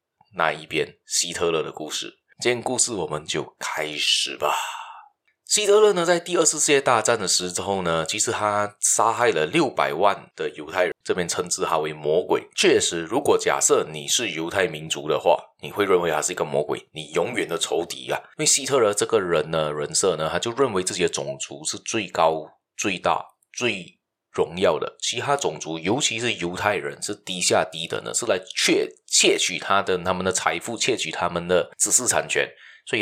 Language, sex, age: Chinese, male, 20-39